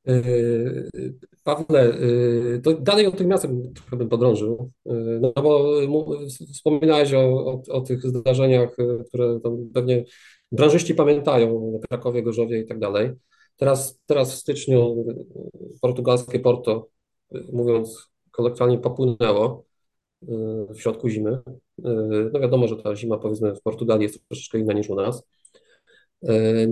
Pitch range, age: 120-140 Hz, 40-59